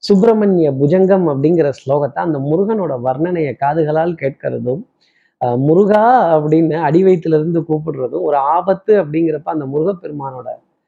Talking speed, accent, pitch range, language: 105 wpm, native, 160-215 Hz, Tamil